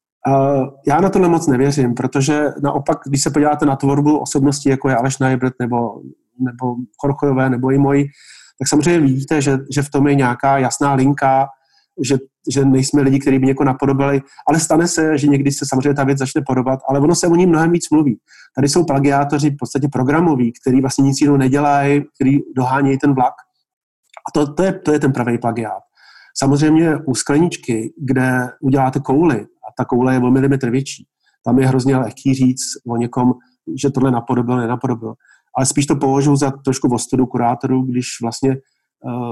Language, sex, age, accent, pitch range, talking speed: Czech, male, 30-49, native, 130-145 Hz, 175 wpm